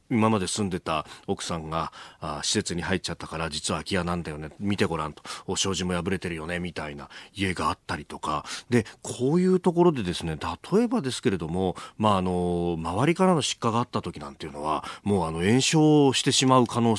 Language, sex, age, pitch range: Japanese, male, 40-59, 95-145 Hz